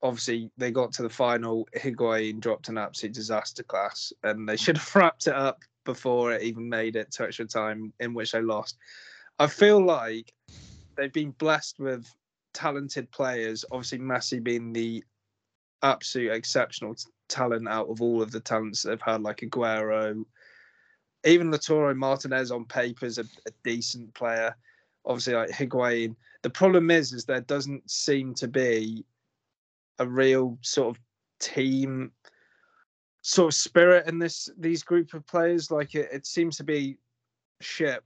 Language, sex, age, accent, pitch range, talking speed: English, male, 20-39, British, 115-145 Hz, 160 wpm